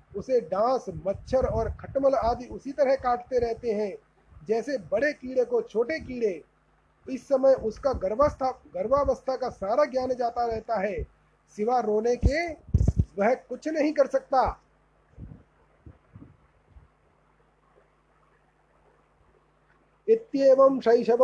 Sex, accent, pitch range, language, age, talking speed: male, native, 220-260 Hz, Hindi, 30-49, 100 wpm